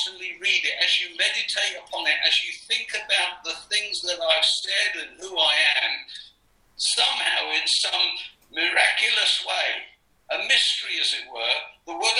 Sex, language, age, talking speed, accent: male, English, 60-79, 155 wpm, British